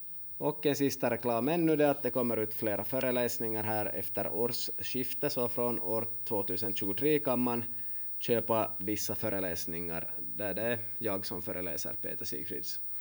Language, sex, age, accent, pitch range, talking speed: Swedish, male, 20-39, Finnish, 105-125 Hz, 150 wpm